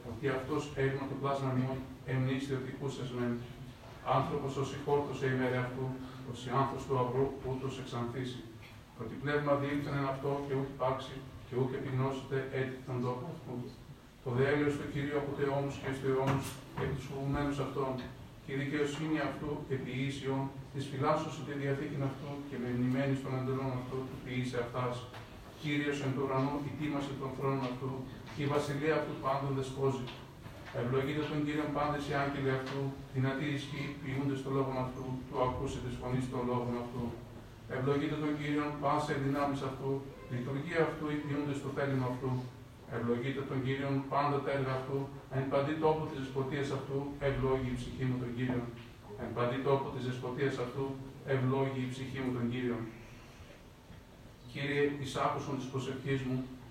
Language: Greek